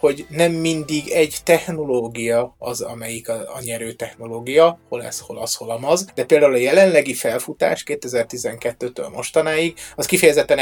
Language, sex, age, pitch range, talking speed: Hungarian, male, 30-49, 120-145 Hz, 145 wpm